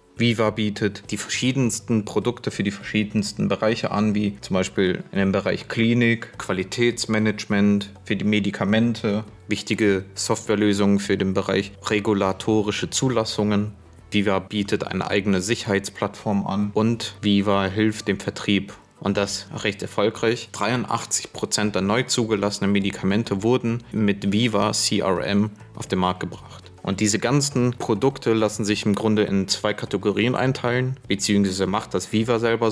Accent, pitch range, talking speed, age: German, 100-110 Hz, 135 wpm, 30-49